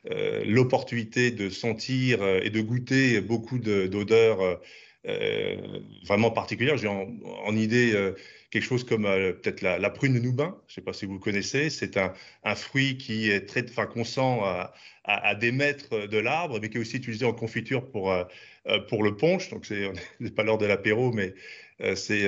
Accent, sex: French, male